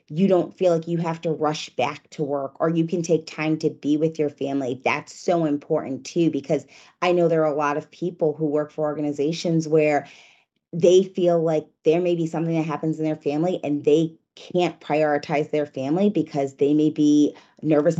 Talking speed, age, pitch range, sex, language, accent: 205 wpm, 30-49, 150-170 Hz, female, English, American